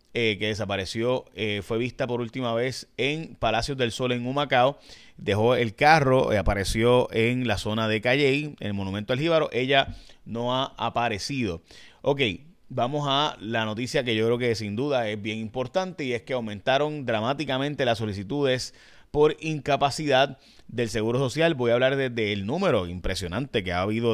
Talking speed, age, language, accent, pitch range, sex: 175 wpm, 30-49, Spanish, Venezuelan, 110-145 Hz, male